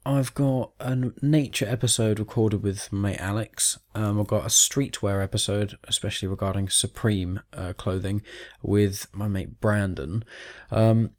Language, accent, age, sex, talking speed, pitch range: English, British, 20-39, male, 140 wpm, 100-125 Hz